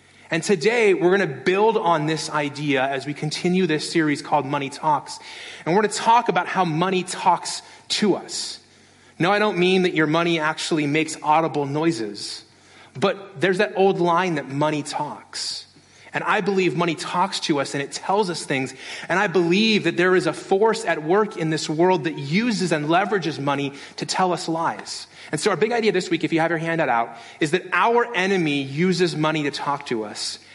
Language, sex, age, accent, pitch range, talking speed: English, male, 30-49, American, 140-185 Hz, 205 wpm